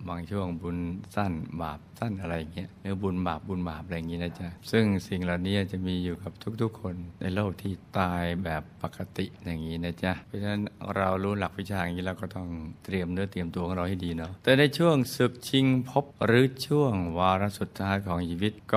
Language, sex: Thai, male